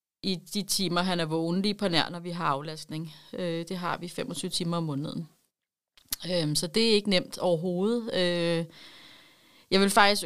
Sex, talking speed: female, 170 wpm